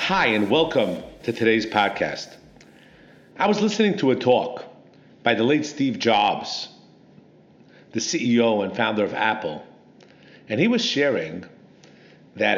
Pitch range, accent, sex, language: 125-185 Hz, American, male, English